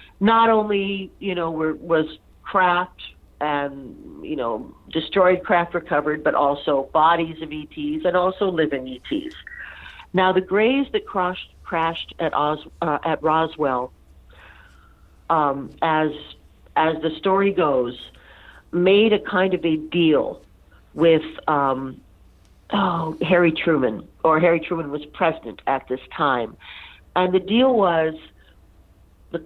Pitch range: 145-200 Hz